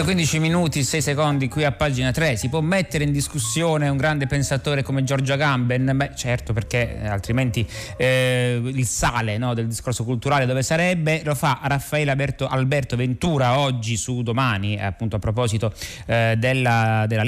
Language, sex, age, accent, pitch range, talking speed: Italian, male, 30-49, native, 110-140 Hz, 165 wpm